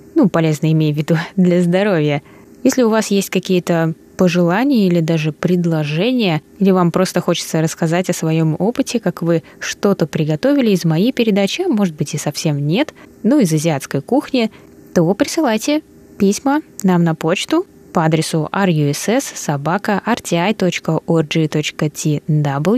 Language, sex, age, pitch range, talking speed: Russian, female, 20-39, 160-220 Hz, 135 wpm